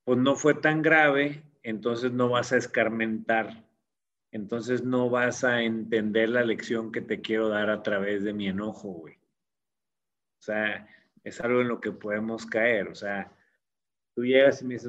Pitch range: 110-135 Hz